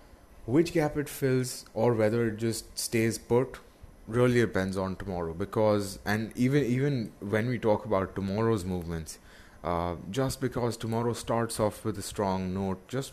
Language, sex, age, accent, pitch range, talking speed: English, male, 20-39, Indian, 95-115 Hz, 160 wpm